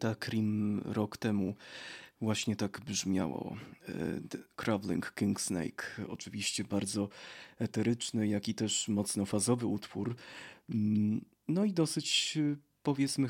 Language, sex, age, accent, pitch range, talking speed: Polish, male, 20-39, native, 110-125 Hz, 95 wpm